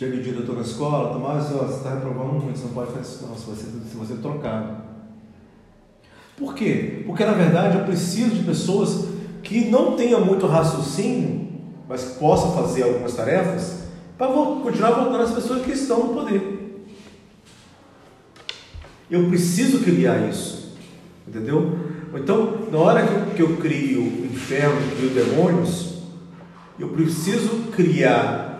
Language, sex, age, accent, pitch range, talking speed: Portuguese, male, 40-59, Brazilian, 130-200 Hz, 145 wpm